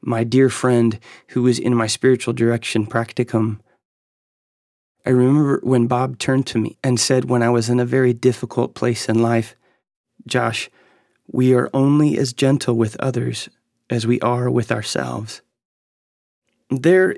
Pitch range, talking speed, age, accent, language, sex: 115-130 Hz, 150 wpm, 30-49, American, English, male